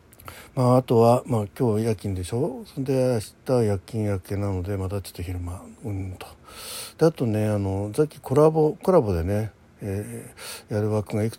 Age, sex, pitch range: 60-79, male, 95-120 Hz